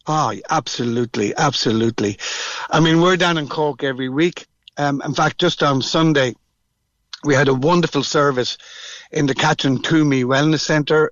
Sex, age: male, 60-79